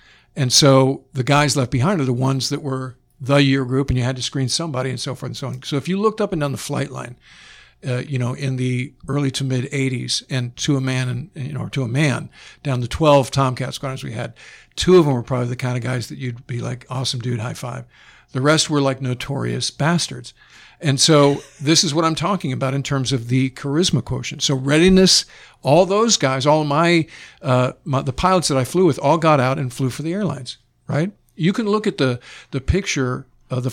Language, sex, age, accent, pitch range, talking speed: English, male, 60-79, American, 130-150 Hz, 240 wpm